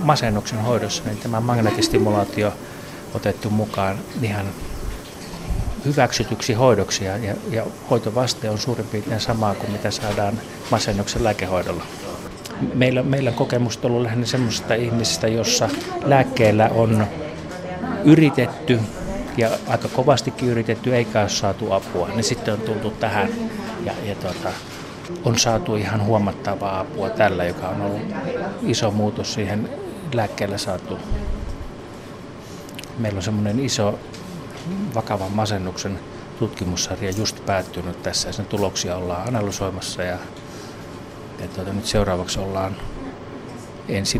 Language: Finnish